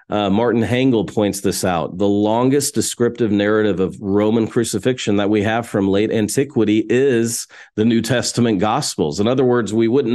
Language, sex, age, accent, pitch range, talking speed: English, male, 40-59, American, 100-125 Hz, 170 wpm